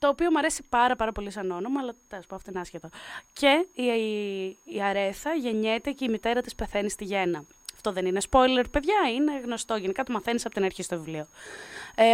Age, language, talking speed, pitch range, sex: 20-39, Greek, 210 wpm, 195-245 Hz, female